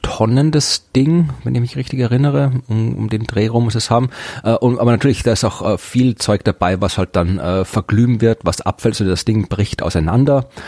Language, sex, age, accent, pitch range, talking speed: German, male, 40-59, German, 100-125 Hz, 220 wpm